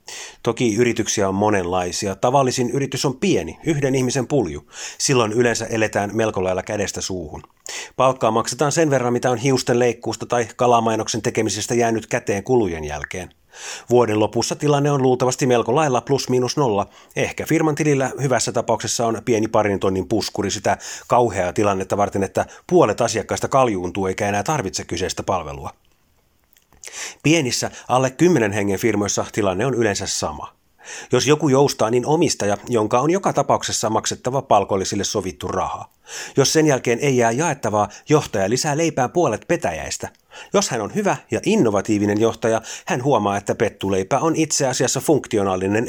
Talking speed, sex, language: 150 wpm, male, Finnish